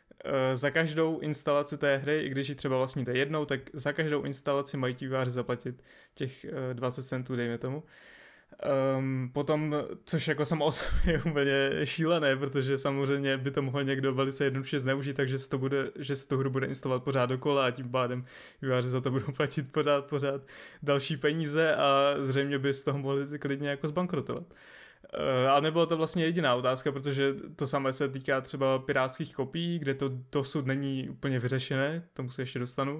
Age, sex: 20-39, male